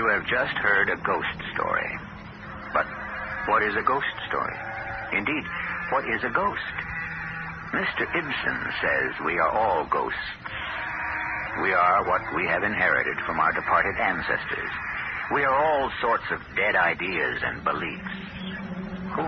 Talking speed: 140 wpm